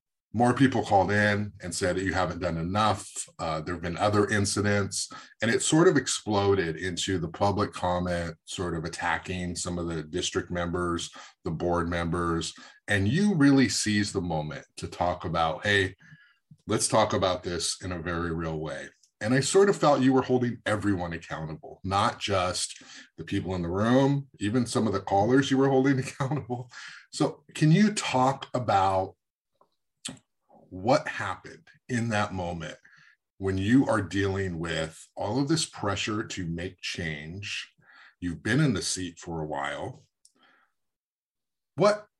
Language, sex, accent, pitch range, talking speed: English, male, American, 85-120 Hz, 160 wpm